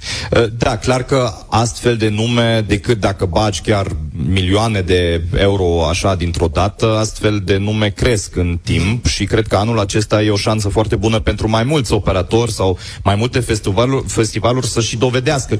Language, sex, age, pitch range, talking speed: Romanian, male, 30-49, 100-120 Hz, 170 wpm